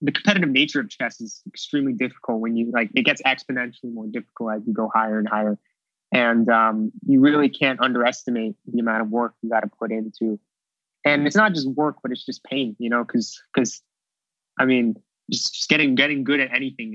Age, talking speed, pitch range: 20-39, 210 wpm, 110-135 Hz